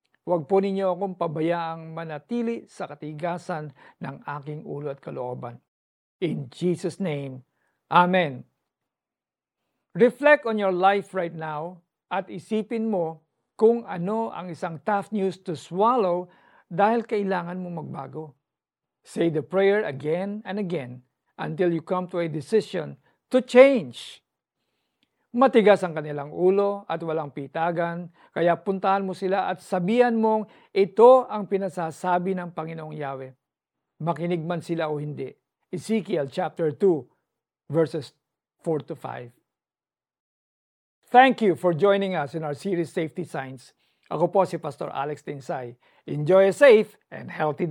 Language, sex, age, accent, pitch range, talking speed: Filipino, male, 50-69, native, 155-195 Hz, 130 wpm